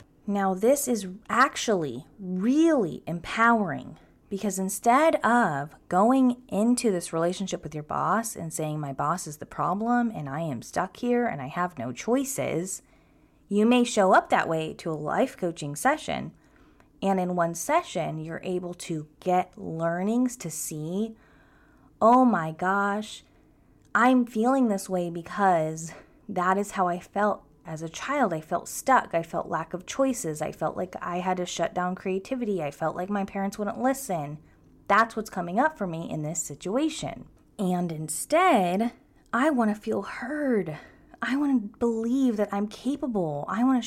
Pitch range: 165-240 Hz